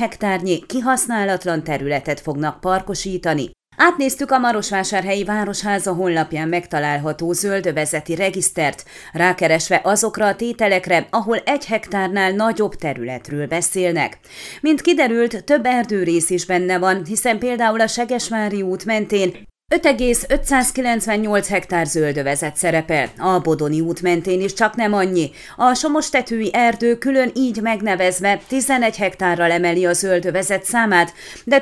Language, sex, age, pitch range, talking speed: Hungarian, female, 30-49, 170-230 Hz, 115 wpm